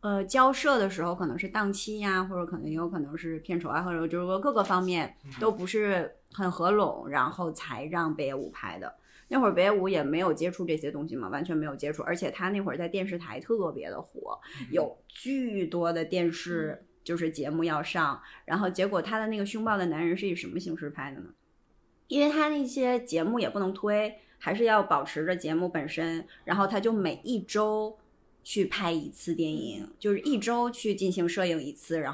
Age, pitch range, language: 20-39, 155-200 Hz, Chinese